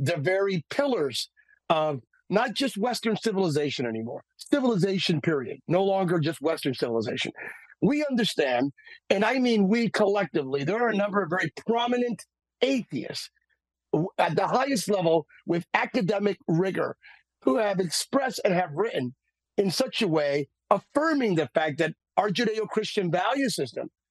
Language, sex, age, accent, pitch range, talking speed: English, male, 50-69, American, 170-235 Hz, 140 wpm